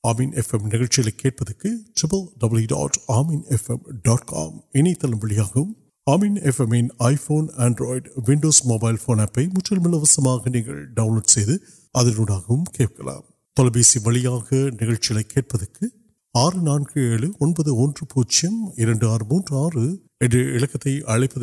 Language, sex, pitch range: Urdu, male, 115-155 Hz